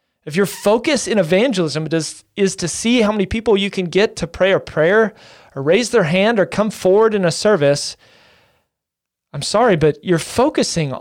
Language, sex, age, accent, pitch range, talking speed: English, male, 30-49, American, 165-220 Hz, 180 wpm